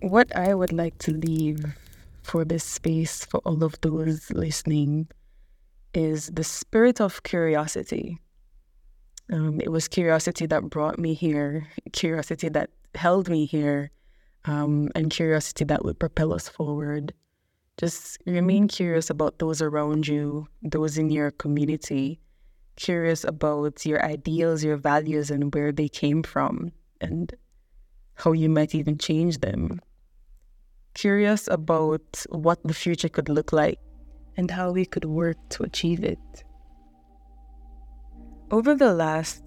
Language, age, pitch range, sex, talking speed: English, 20-39, 150-165 Hz, female, 135 wpm